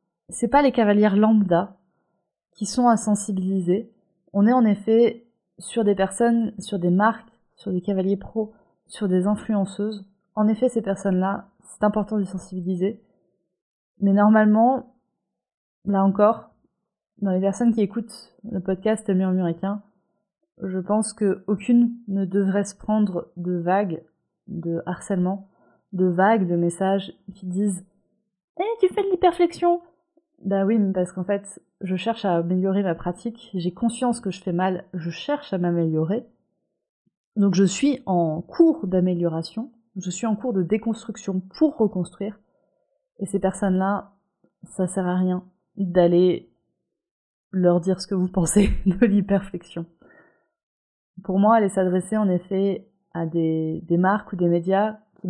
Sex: female